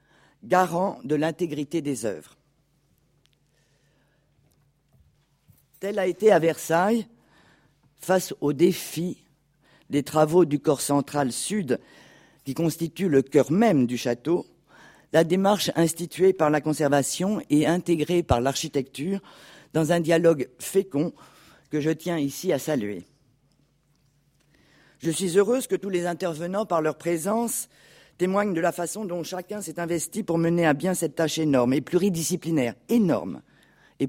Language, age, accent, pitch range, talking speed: French, 50-69, French, 140-175 Hz, 130 wpm